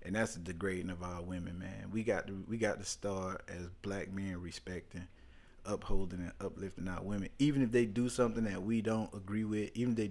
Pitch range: 95-125 Hz